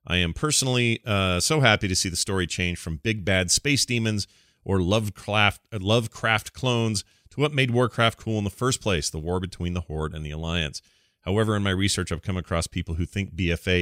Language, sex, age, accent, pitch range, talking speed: English, male, 40-59, American, 85-110 Hz, 210 wpm